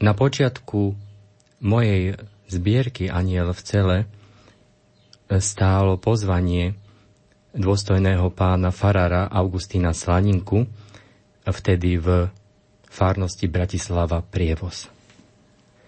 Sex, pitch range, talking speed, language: male, 90-105 Hz, 70 wpm, Slovak